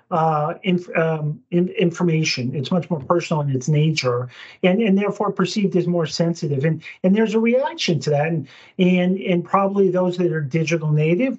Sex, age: male, 40-59